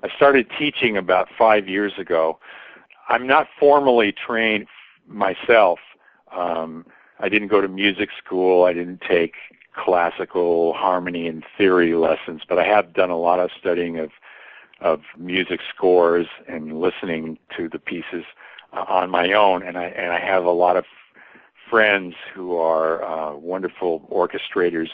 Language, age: English, 50-69